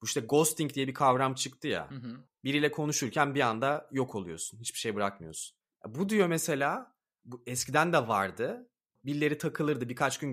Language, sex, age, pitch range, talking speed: Turkish, male, 30-49, 125-180 Hz, 155 wpm